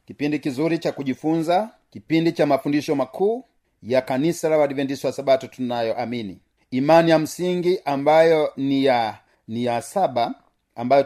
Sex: male